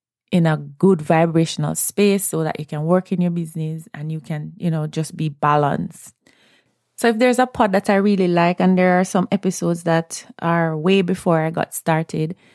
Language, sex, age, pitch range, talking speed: English, female, 20-39, 160-185 Hz, 200 wpm